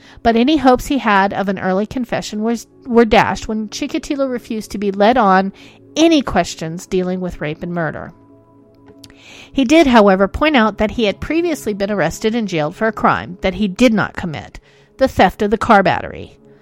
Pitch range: 190-260 Hz